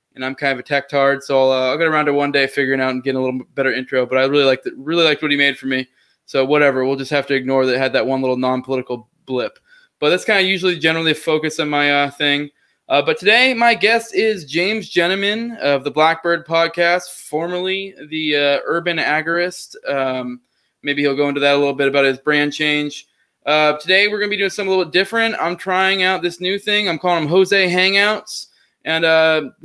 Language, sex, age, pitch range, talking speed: English, male, 20-39, 145-185 Hz, 235 wpm